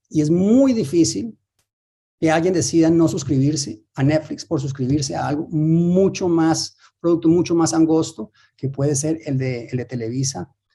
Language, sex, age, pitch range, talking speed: Spanish, male, 30-49, 120-155 Hz, 155 wpm